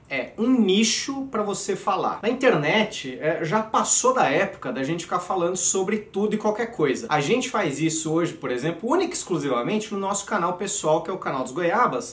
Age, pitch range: 30-49, 155-230 Hz